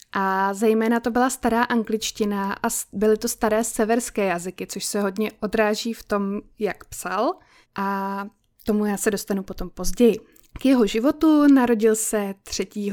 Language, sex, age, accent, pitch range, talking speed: Czech, female, 20-39, native, 195-240 Hz, 155 wpm